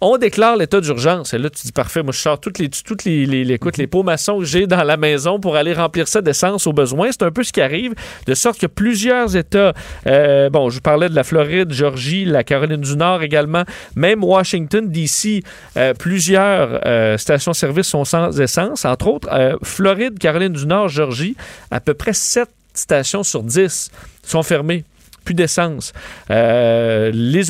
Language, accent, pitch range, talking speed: French, Canadian, 145-185 Hz, 190 wpm